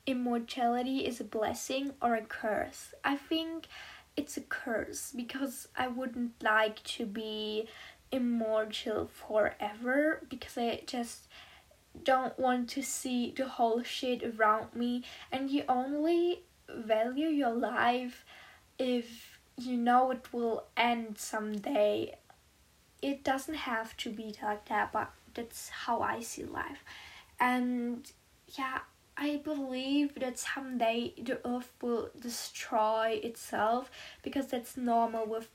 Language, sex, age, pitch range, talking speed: English, female, 10-29, 225-260 Hz, 125 wpm